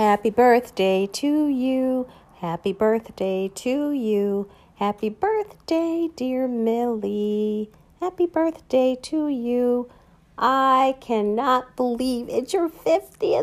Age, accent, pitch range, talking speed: 40-59, American, 190-255 Hz, 100 wpm